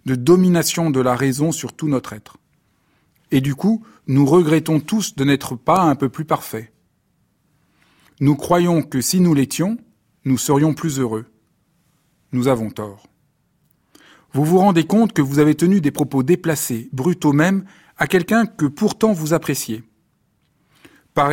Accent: French